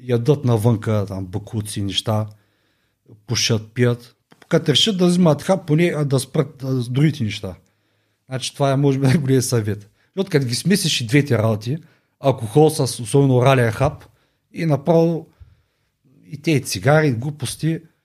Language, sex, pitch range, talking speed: Bulgarian, male, 120-170 Hz, 140 wpm